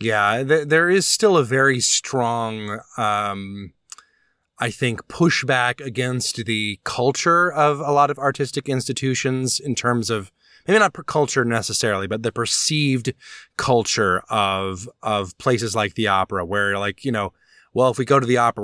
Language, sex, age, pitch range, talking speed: English, male, 20-39, 105-135 Hz, 155 wpm